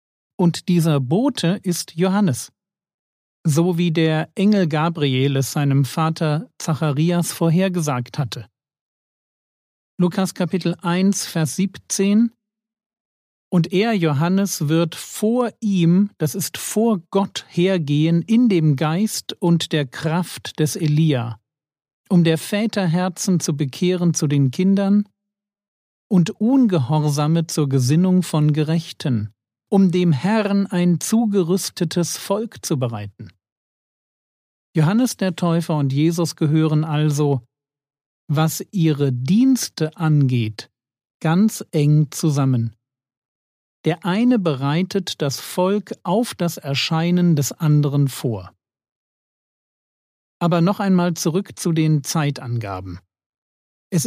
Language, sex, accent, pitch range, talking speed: German, male, German, 145-190 Hz, 105 wpm